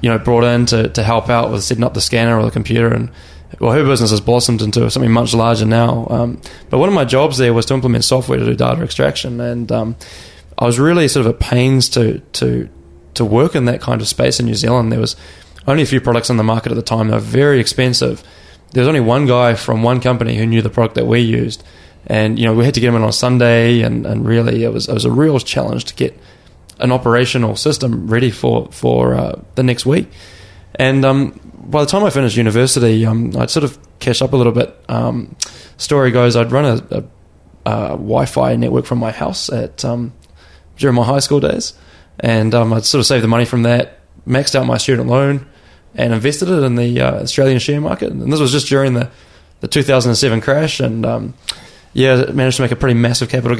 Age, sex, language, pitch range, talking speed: 20-39, male, English, 110-130 Hz, 235 wpm